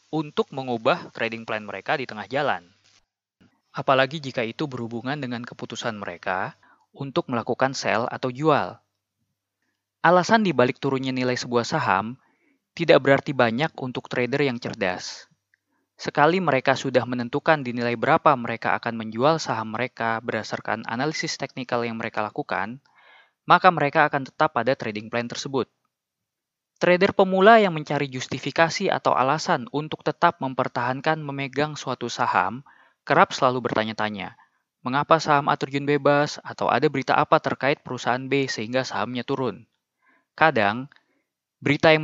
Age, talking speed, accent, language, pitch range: 20-39, 135 wpm, native, Indonesian, 120-155 Hz